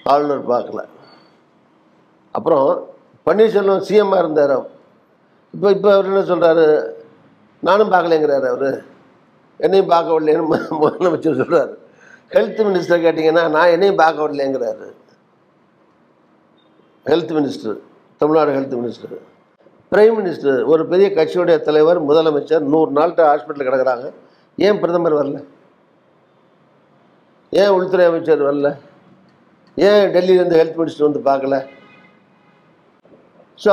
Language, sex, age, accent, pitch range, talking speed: Tamil, male, 60-79, native, 150-185 Hz, 100 wpm